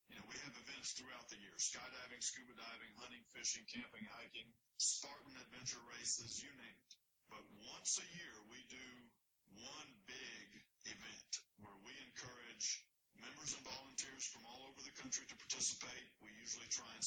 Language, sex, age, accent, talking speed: English, male, 50-69, American, 165 wpm